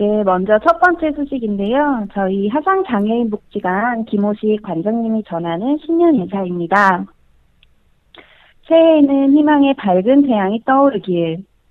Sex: female